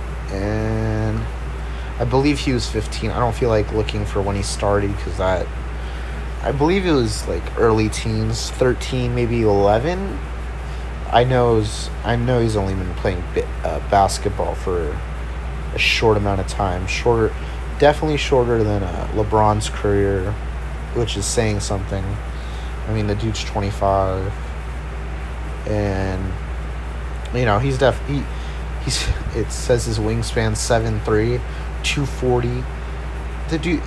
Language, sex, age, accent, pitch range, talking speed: English, male, 30-49, American, 75-110 Hz, 130 wpm